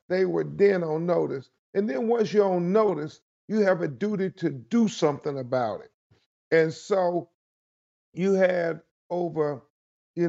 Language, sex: English, male